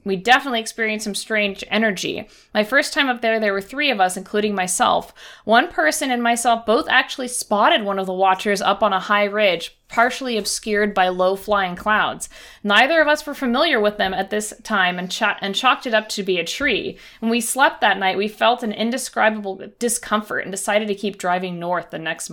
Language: English